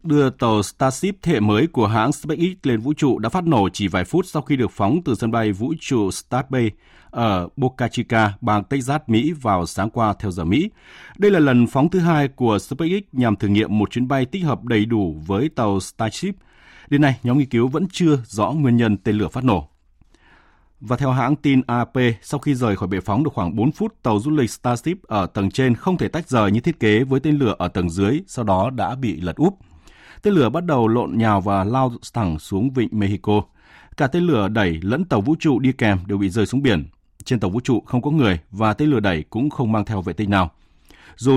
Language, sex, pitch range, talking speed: Vietnamese, male, 100-145 Hz, 235 wpm